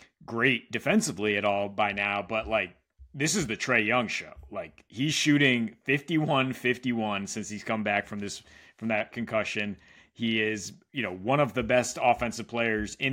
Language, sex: English, male